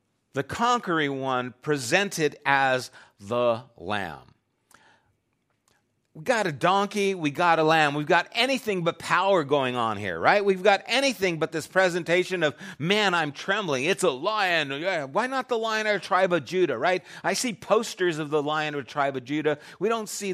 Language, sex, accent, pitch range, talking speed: English, male, American, 100-155 Hz, 175 wpm